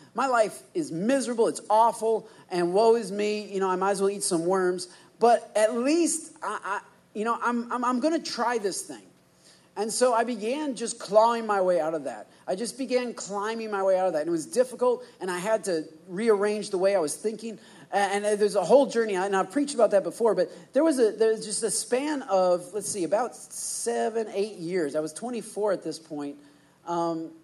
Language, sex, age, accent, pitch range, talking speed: English, male, 40-59, American, 175-235 Hz, 225 wpm